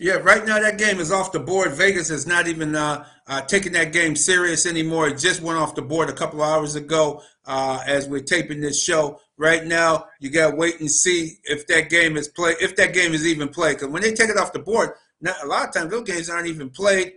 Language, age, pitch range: English, 50-69, 145-170 Hz